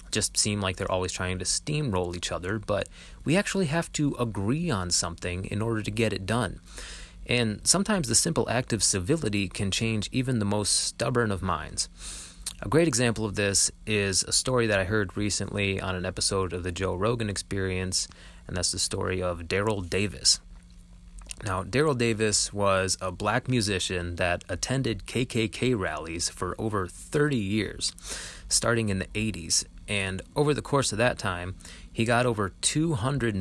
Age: 30-49